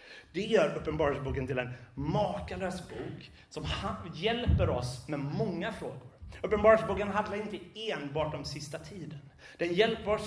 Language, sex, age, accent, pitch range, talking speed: Swedish, male, 30-49, native, 140-185 Hz, 135 wpm